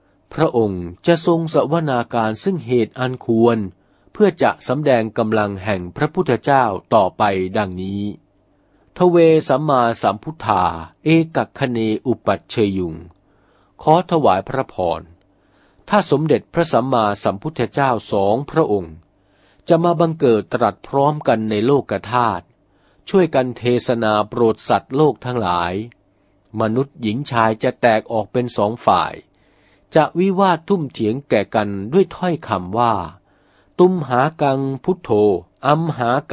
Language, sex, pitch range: Thai, male, 100-145 Hz